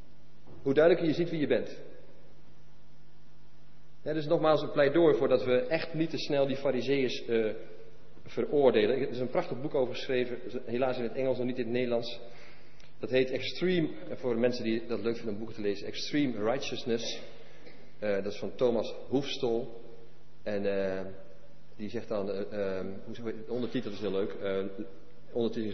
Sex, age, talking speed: male, 40-59, 170 wpm